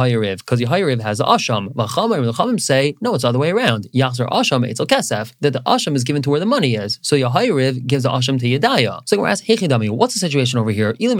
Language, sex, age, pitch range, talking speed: English, male, 20-39, 125-145 Hz, 255 wpm